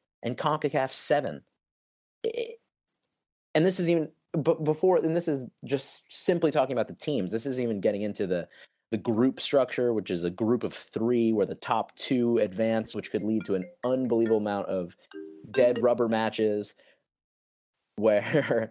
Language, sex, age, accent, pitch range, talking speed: English, male, 30-49, American, 95-135 Hz, 160 wpm